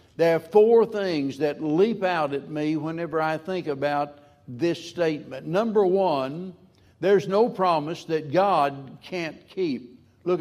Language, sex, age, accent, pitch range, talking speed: English, male, 60-79, American, 155-205 Hz, 145 wpm